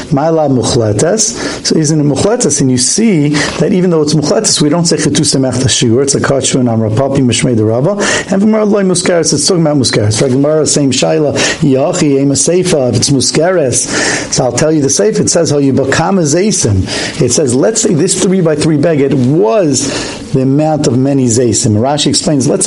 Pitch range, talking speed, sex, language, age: 125-160 Hz, 180 wpm, male, English, 50-69